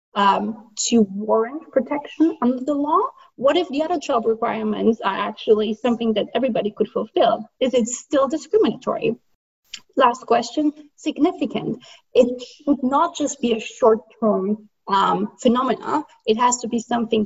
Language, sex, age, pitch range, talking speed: English, female, 30-49, 220-290 Hz, 145 wpm